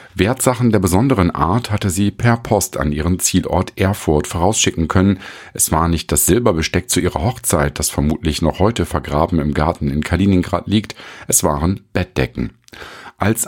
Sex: male